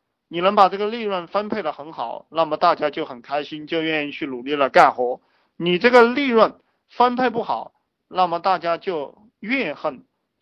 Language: Chinese